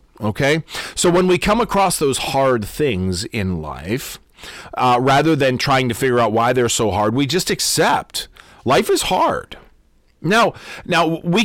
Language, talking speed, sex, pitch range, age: English, 160 wpm, male, 110-150 Hz, 40-59